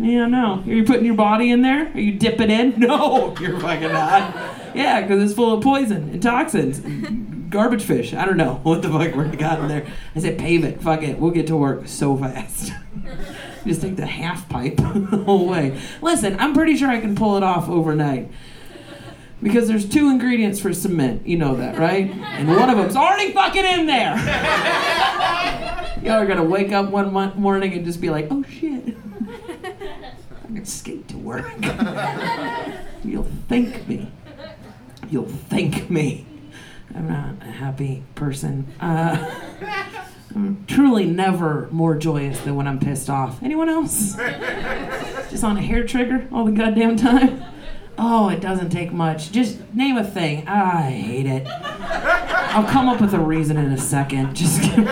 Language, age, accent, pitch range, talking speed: English, 40-59, American, 160-240 Hz, 175 wpm